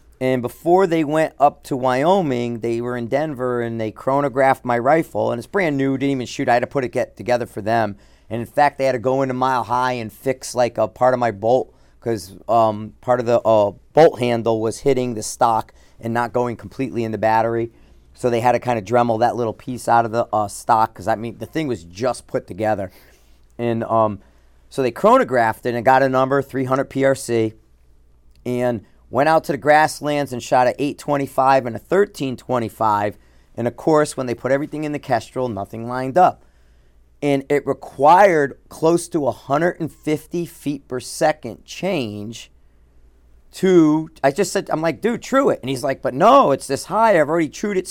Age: 40-59